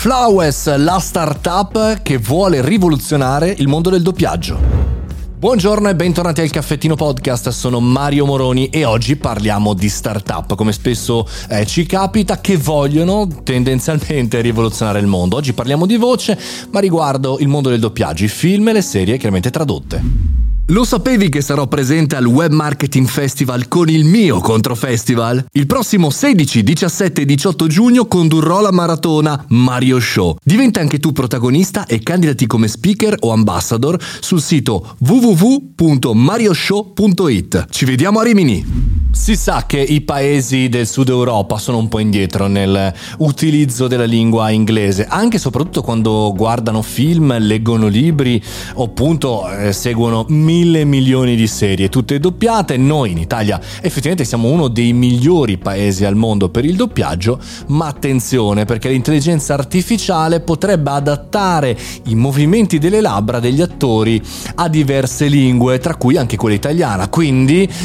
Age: 30-49